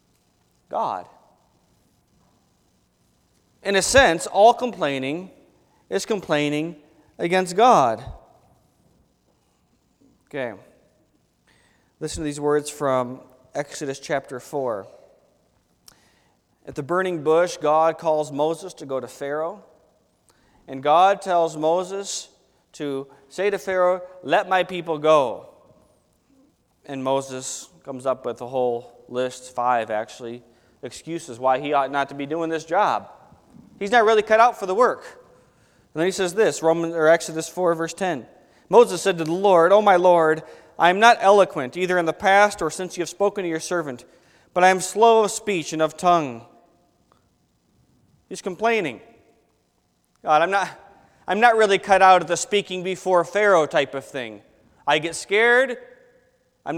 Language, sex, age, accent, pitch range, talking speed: English, male, 30-49, American, 135-195 Hz, 145 wpm